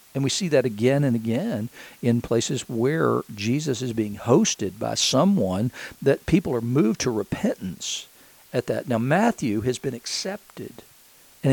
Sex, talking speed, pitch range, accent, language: male, 155 wpm, 110-135 Hz, American, English